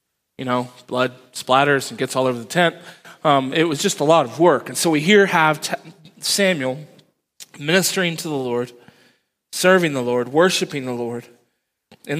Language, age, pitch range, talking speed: English, 20-39, 130-160 Hz, 175 wpm